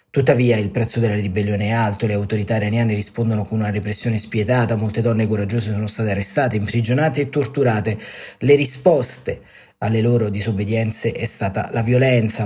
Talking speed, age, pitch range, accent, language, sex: 160 wpm, 30-49, 110-125 Hz, native, Italian, male